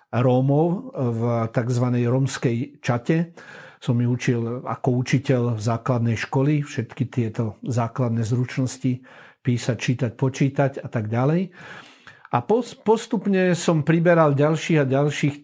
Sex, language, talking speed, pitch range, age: male, Slovak, 115 wpm, 120-140 Hz, 50-69